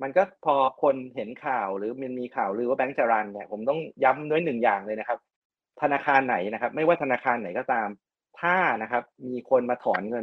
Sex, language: male, Thai